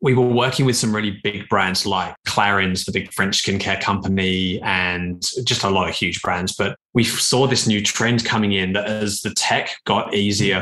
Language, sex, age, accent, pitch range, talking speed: English, male, 20-39, British, 95-115 Hz, 205 wpm